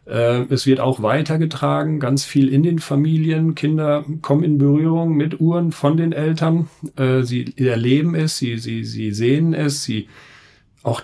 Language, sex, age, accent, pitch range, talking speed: German, male, 40-59, German, 125-150 Hz, 150 wpm